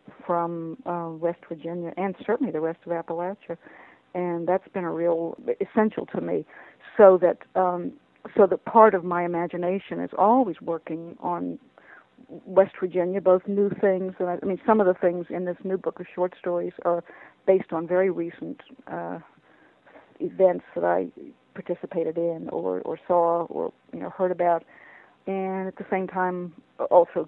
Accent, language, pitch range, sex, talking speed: American, English, 170-195 Hz, female, 165 wpm